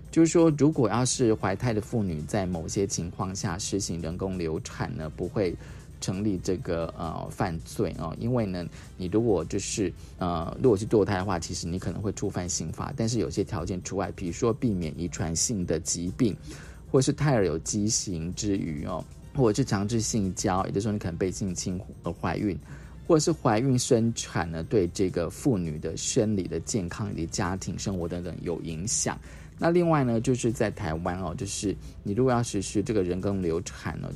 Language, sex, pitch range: Chinese, male, 85-115 Hz